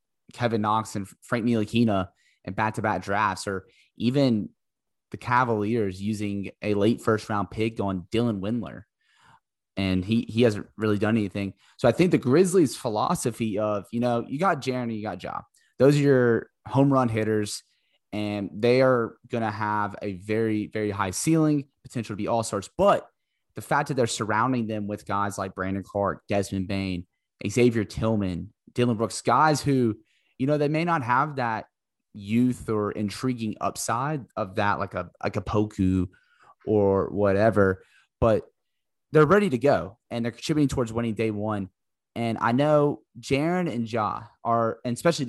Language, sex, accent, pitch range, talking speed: English, male, American, 105-125 Hz, 170 wpm